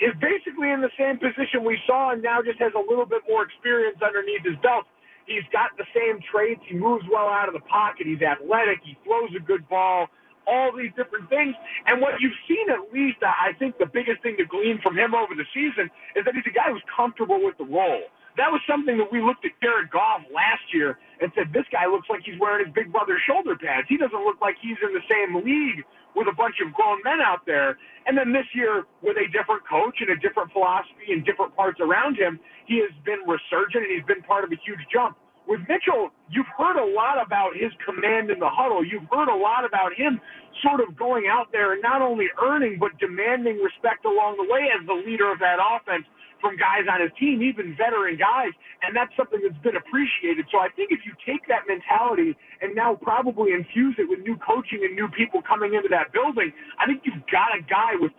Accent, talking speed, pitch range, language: American, 230 wpm, 205-295 Hz, English